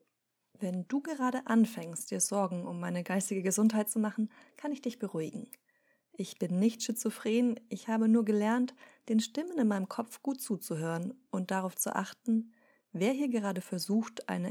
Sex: female